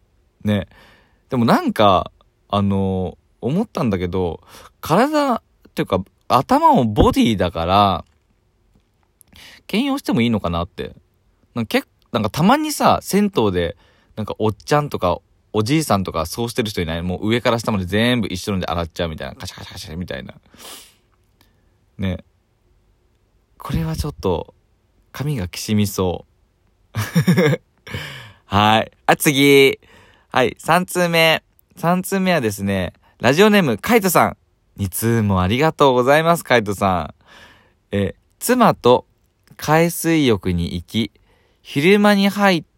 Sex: male